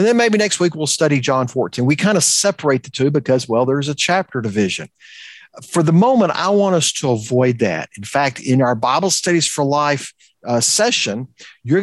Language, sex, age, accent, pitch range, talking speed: English, male, 50-69, American, 130-200 Hz, 210 wpm